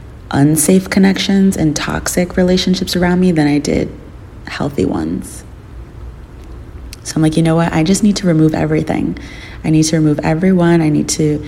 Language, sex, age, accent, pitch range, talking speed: English, female, 30-49, American, 145-165 Hz, 165 wpm